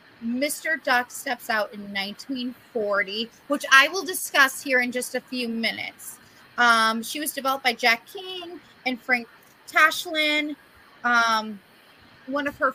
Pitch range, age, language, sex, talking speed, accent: 225-280 Hz, 30-49, English, female, 140 wpm, American